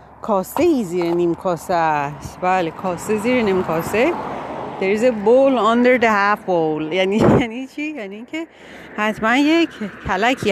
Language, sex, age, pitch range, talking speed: Persian, female, 40-59, 190-285 Hz, 130 wpm